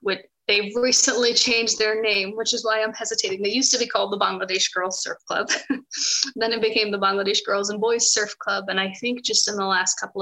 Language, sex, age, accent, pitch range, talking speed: English, female, 20-39, American, 190-230 Hz, 230 wpm